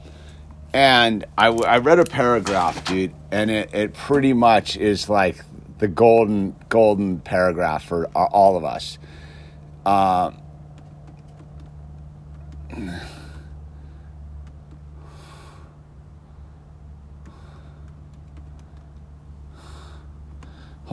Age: 50-69